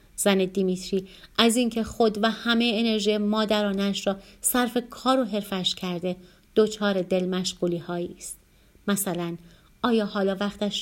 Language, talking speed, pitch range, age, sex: Persian, 130 wpm, 185-225 Hz, 30-49, female